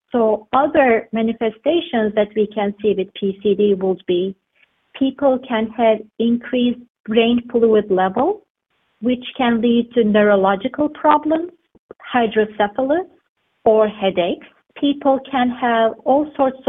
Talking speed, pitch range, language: 115 wpm, 215-265 Hz, English